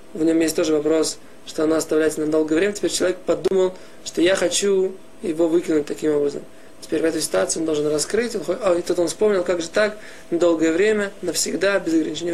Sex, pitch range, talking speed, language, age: male, 160-185 Hz, 210 wpm, Russian, 20-39